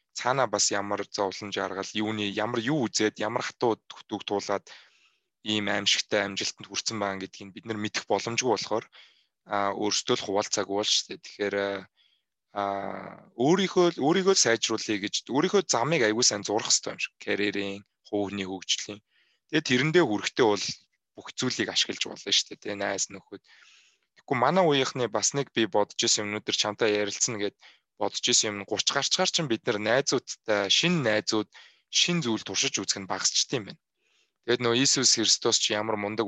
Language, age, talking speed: English, 20-39, 135 wpm